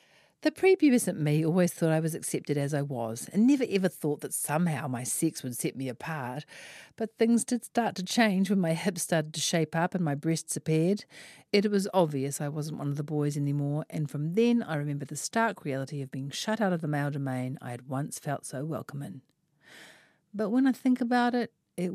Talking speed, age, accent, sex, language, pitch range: 220 wpm, 50-69, Australian, female, English, 145-195 Hz